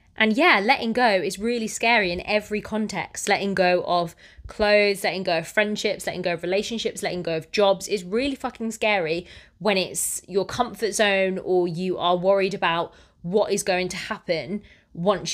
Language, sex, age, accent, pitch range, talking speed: English, female, 20-39, British, 180-215 Hz, 180 wpm